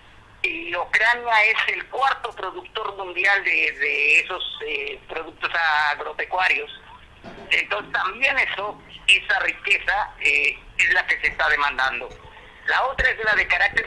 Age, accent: 50-69, Mexican